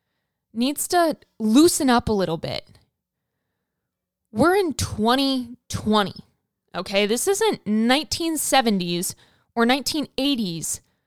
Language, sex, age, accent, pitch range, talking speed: English, female, 20-39, American, 215-275 Hz, 85 wpm